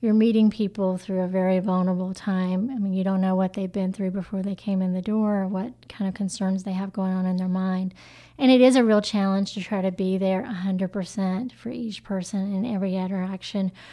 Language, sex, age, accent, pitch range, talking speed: English, female, 30-49, American, 190-215 Hz, 230 wpm